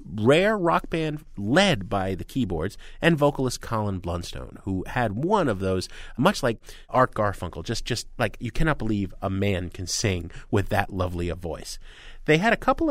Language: English